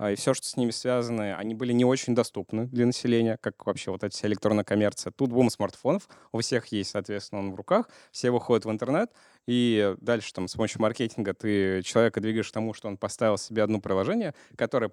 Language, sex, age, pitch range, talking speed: Russian, male, 20-39, 105-120 Hz, 210 wpm